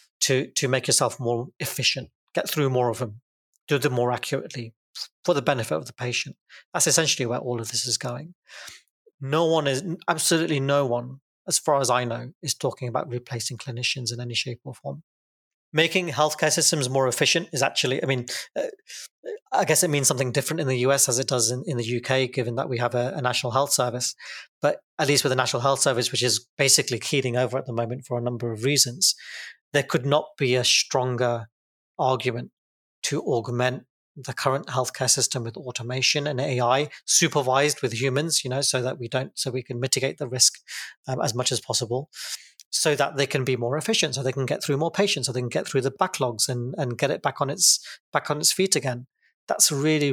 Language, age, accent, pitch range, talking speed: English, 30-49, British, 125-145 Hz, 210 wpm